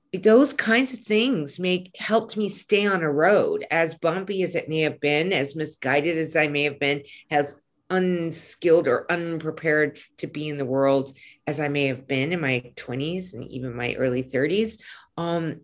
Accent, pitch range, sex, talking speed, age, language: American, 135-180 Hz, female, 180 wpm, 40-59, English